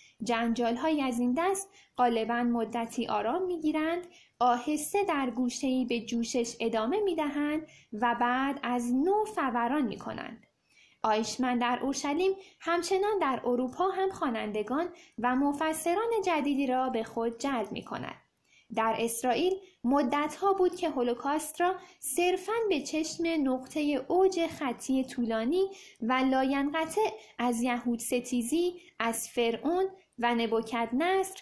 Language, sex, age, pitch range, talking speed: Persian, female, 10-29, 240-340 Hz, 130 wpm